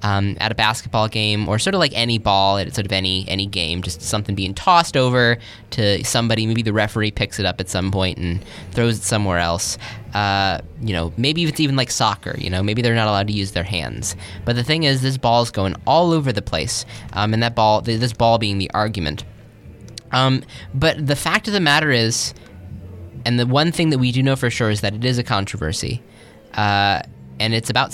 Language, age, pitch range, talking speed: English, 10-29, 100-125 Hz, 225 wpm